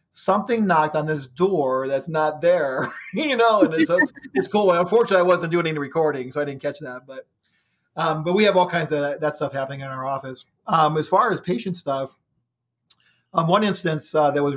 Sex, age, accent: male, 40-59, American